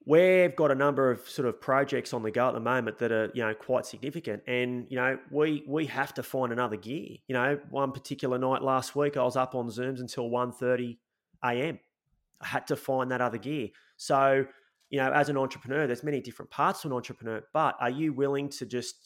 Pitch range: 120-140 Hz